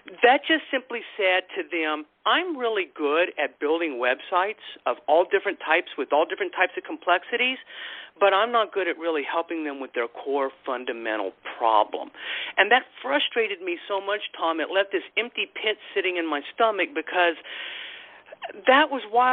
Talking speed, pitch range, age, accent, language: 170 wpm, 170-275 Hz, 50-69, American, English